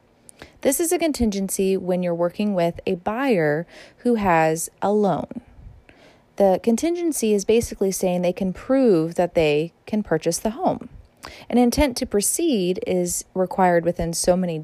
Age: 20-39